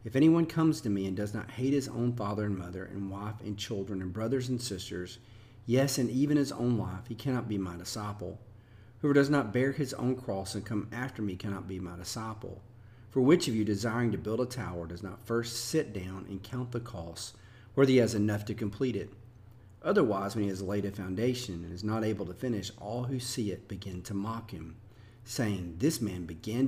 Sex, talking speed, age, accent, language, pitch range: male, 220 wpm, 40-59, American, English, 100-120 Hz